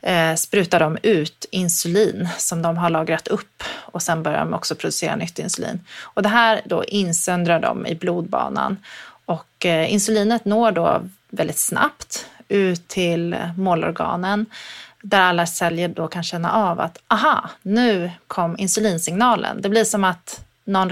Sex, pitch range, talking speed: female, 175-215 Hz, 145 wpm